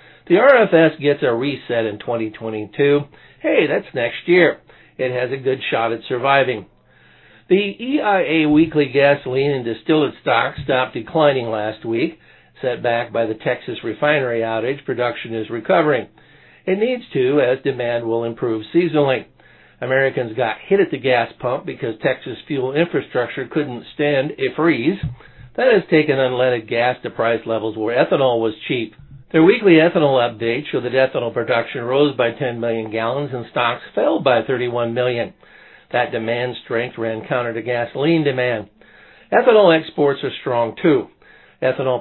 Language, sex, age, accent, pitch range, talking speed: English, male, 60-79, American, 115-145 Hz, 155 wpm